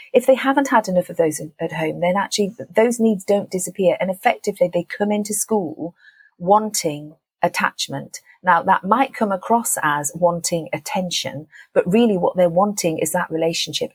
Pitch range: 175-235 Hz